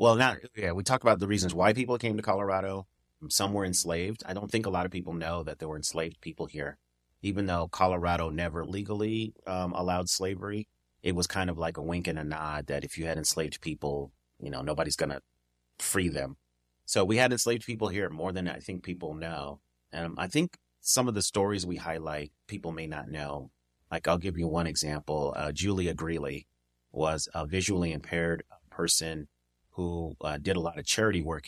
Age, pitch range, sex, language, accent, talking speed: 30-49, 75-95 Hz, male, English, American, 205 wpm